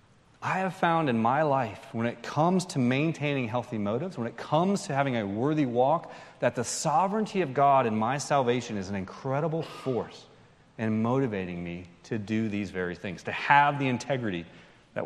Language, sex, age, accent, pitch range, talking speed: English, male, 30-49, American, 110-155 Hz, 185 wpm